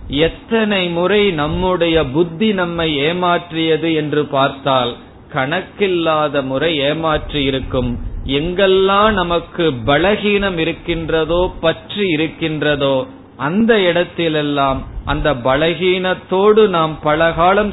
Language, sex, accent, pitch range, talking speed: Tamil, male, native, 145-185 Hz, 80 wpm